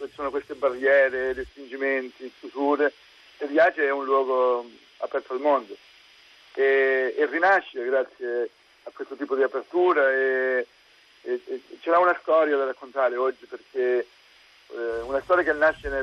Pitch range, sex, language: 130-155 Hz, male, Italian